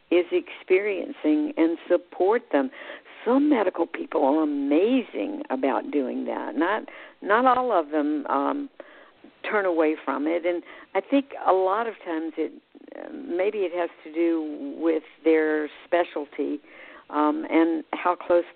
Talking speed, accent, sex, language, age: 140 wpm, American, female, English, 60-79